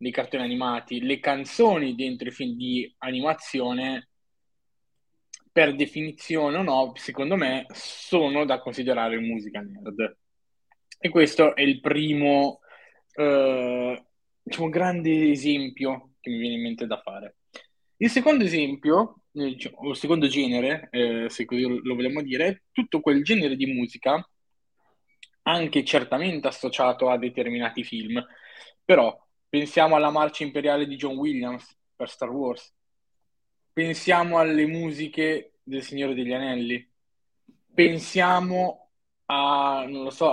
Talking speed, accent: 125 wpm, native